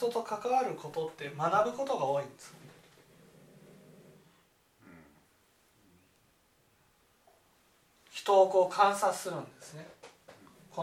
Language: Japanese